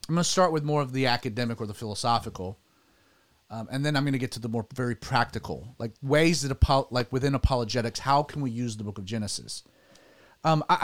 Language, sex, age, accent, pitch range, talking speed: English, male, 30-49, American, 115-150 Hz, 225 wpm